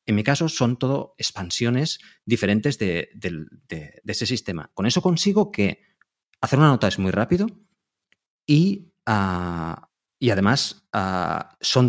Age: 30-49